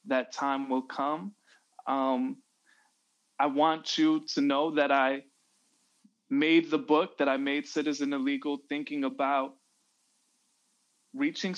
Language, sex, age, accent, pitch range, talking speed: English, male, 20-39, American, 135-205 Hz, 120 wpm